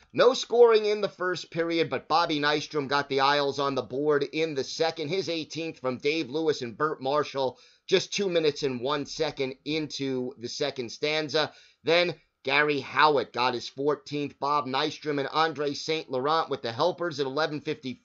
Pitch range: 145-180 Hz